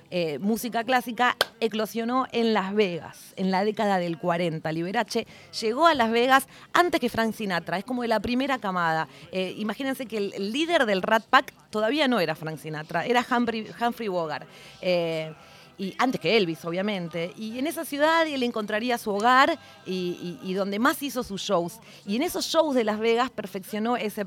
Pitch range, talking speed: 175-235 Hz, 185 wpm